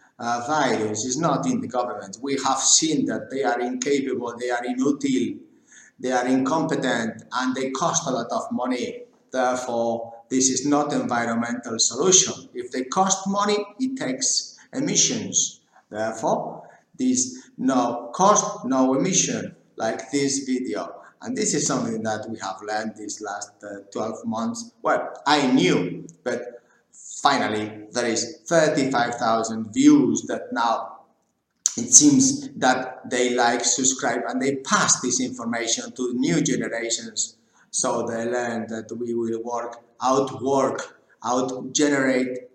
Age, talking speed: 50-69, 135 wpm